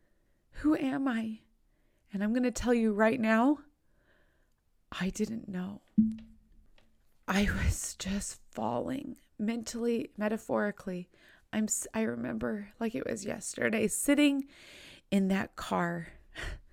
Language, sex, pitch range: English, female, 205-260 Hz